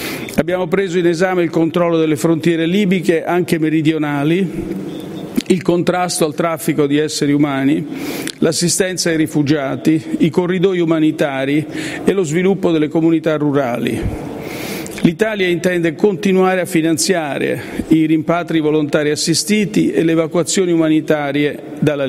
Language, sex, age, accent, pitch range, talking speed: Italian, male, 50-69, native, 150-175 Hz, 120 wpm